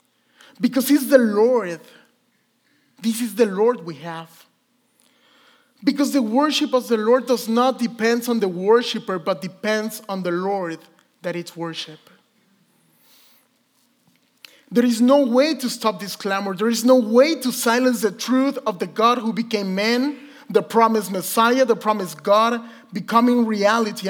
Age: 30-49